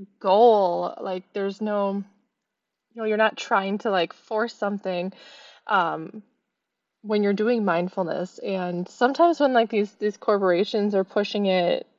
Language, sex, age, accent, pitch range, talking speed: English, female, 20-39, American, 190-230 Hz, 140 wpm